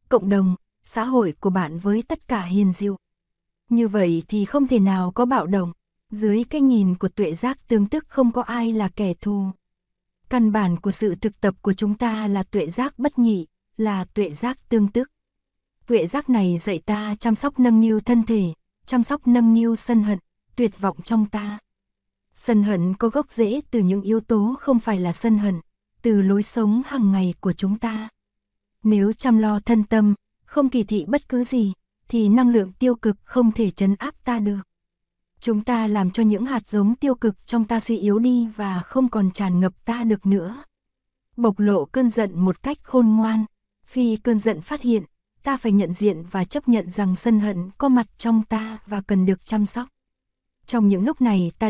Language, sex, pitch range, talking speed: Vietnamese, female, 195-235 Hz, 205 wpm